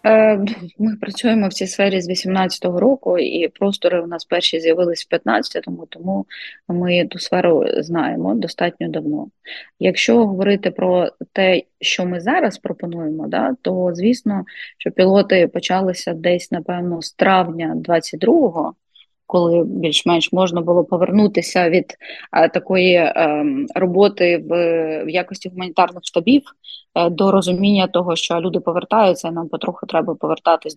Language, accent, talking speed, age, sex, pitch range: Ukrainian, native, 140 wpm, 20-39, female, 170-200 Hz